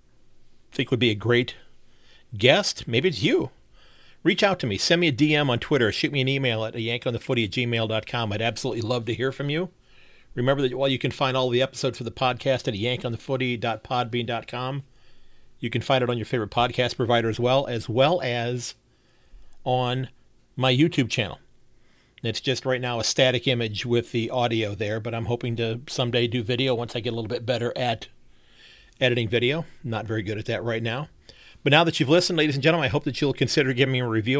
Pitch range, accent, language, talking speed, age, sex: 120-130 Hz, American, English, 210 wpm, 40-59, male